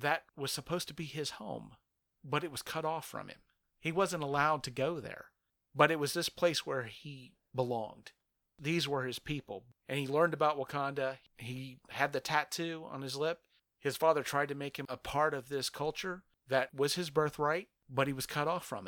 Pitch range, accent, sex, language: 125-150 Hz, American, male, English